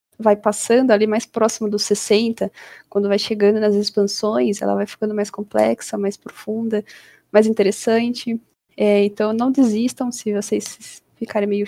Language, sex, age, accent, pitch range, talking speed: English, female, 20-39, Brazilian, 205-240 Hz, 150 wpm